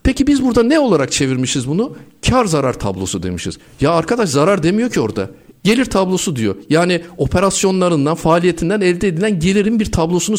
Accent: native